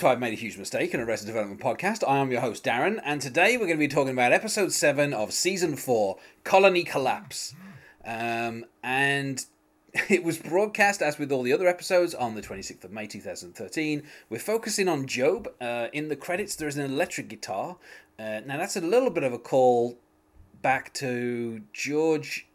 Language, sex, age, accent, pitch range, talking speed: English, male, 30-49, British, 115-155 Hz, 190 wpm